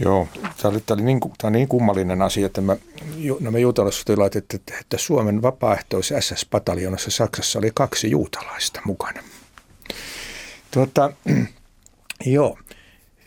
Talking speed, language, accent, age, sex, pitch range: 110 wpm, Finnish, native, 60-79, male, 95-120 Hz